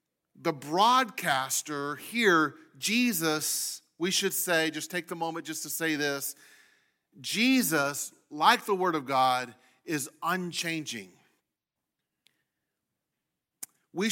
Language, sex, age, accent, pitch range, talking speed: English, male, 40-59, American, 155-195 Hz, 100 wpm